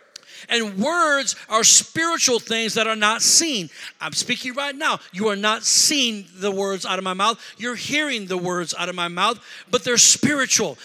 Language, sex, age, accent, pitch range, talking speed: English, male, 50-69, American, 210-270 Hz, 190 wpm